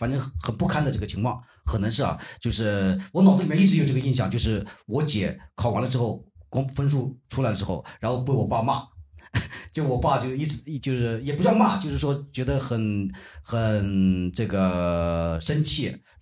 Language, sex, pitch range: Chinese, male, 105-160 Hz